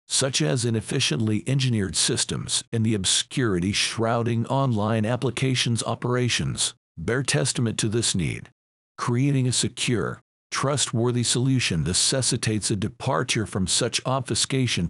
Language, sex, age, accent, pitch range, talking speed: English, male, 50-69, American, 110-135 Hz, 115 wpm